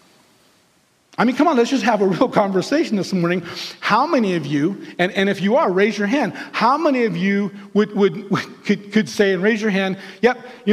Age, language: 40-59, English